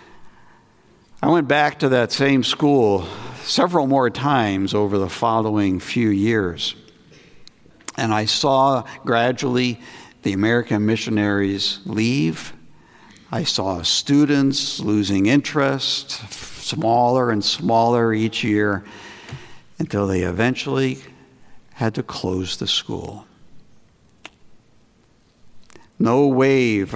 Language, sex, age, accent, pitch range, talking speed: English, male, 60-79, American, 105-135 Hz, 95 wpm